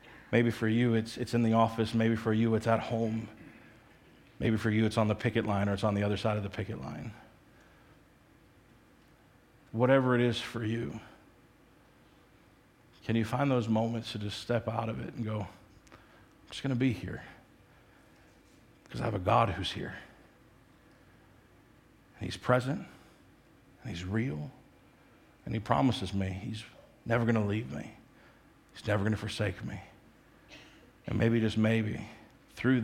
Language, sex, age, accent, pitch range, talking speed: English, male, 50-69, American, 105-120 Hz, 165 wpm